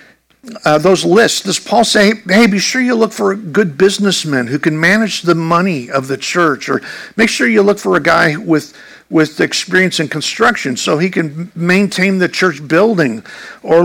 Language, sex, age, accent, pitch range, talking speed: English, male, 50-69, American, 180-235 Hz, 190 wpm